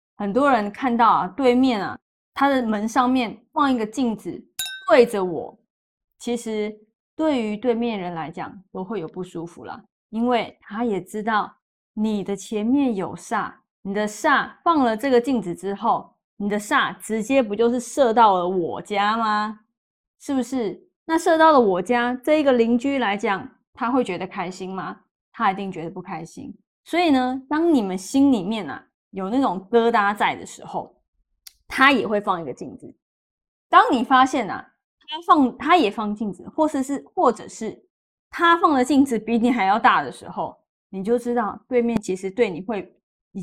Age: 20-39